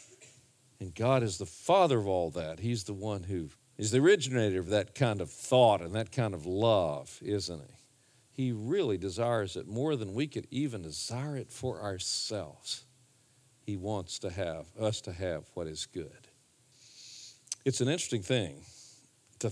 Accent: American